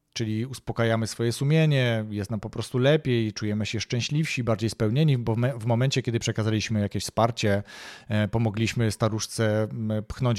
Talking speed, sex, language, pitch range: 140 wpm, male, Polish, 110-145 Hz